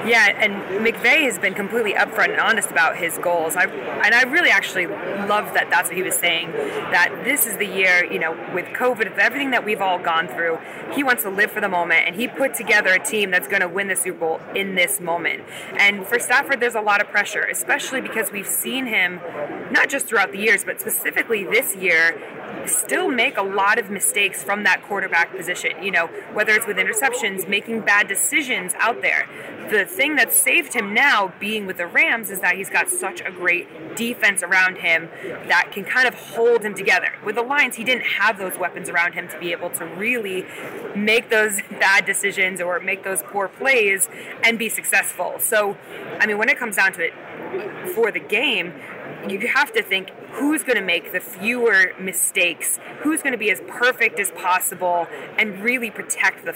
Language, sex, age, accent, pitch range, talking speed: English, female, 20-39, American, 185-230 Hz, 205 wpm